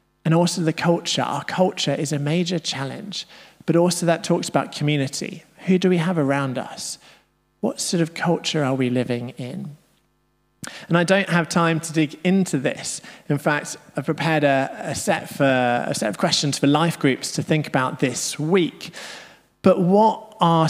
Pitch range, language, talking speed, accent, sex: 140-175 Hz, English, 175 wpm, British, male